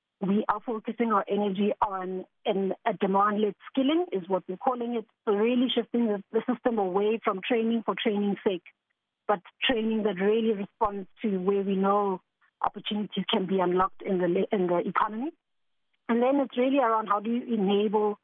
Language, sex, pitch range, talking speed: English, female, 195-230 Hz, 170 wpm